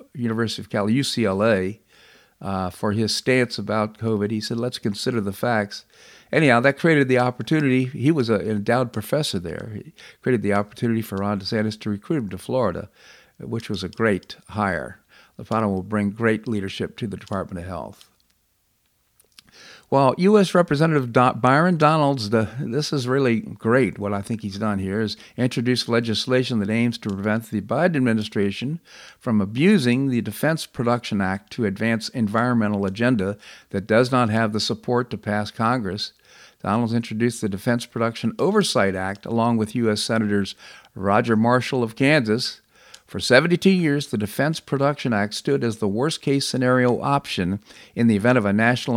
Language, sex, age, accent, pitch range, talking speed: English, male, 50-69, American, 105-130 Hz, 160 wpm